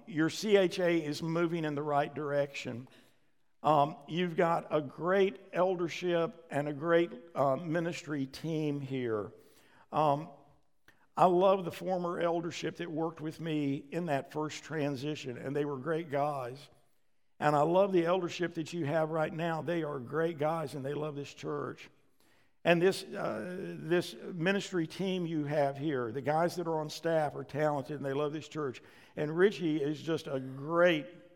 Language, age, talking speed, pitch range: English, 60-79, 165 wpm, 145-170 Hz